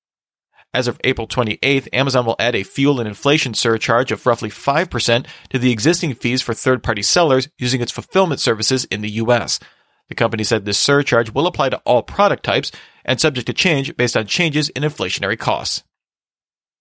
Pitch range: 115-145 Hz